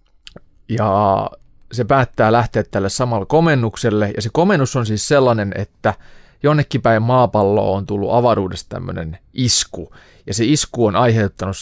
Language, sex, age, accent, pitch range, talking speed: Finnish, male, 30-49, native, 95-125 Hz, 140 wpm